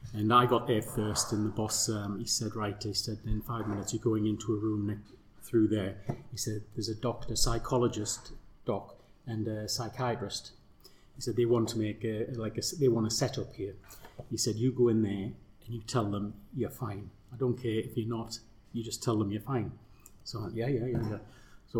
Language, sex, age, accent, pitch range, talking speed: English, male, 30-49, British, 110-125 Hz, 215 wpm